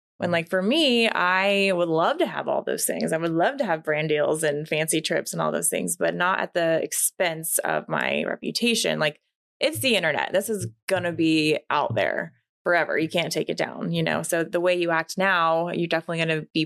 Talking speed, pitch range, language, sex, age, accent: 230 wpm, 160-215 Hz, English, female, 20-39, American